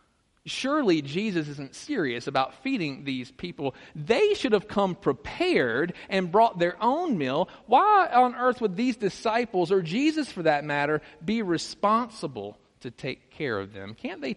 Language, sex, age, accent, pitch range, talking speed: English, male, 40-59, American, 130-205 Hz, 160 wpm